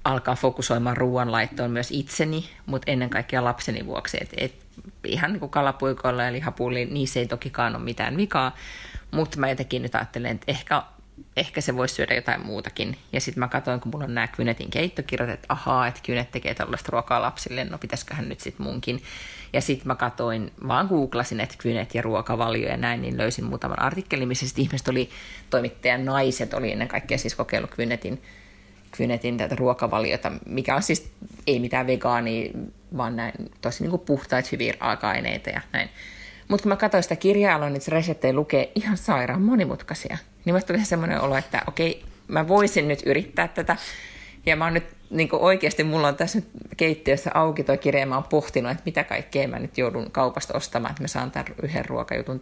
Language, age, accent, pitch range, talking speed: Finnish, 30-49, native, 120-155 Hz, 185 wpm